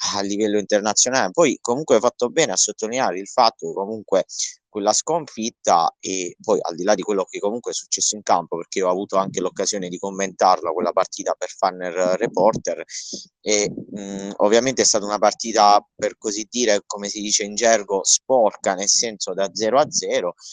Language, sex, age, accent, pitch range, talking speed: Italian, male, 30-49, native, 95-120 Hz, 180 wpm